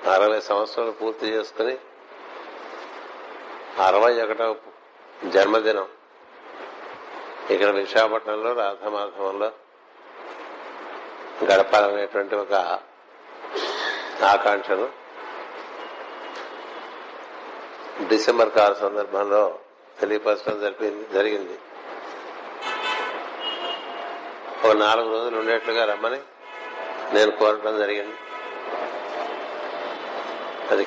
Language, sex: Telugu, male